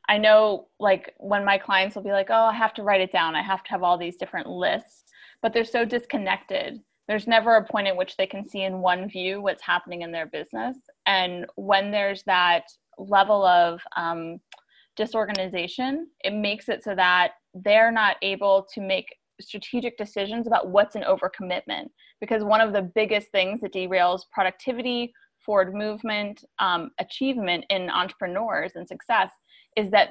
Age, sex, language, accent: 20-39, female, English, American